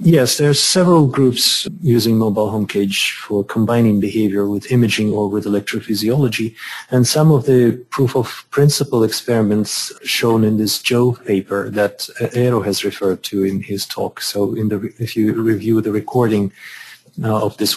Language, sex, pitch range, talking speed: English, male, 105-120 Hz, 160 wpm